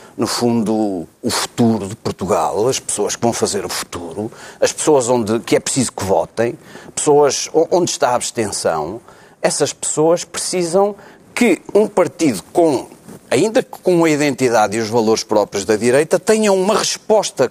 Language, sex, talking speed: Portuguese, male, 160 wpm